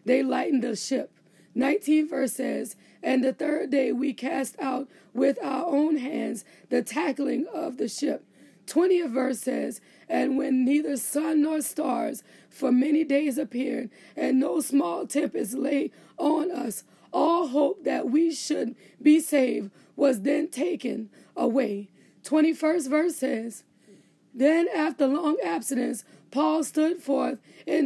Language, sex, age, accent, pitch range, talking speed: English, female, 20-39, American, 260-310 Hz, 140 wpm